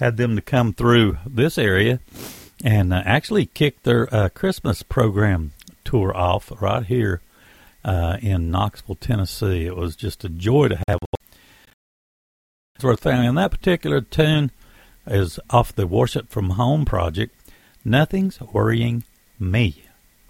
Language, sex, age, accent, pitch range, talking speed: English, male, 60-79, American, 100-140 Hz, 130 wpm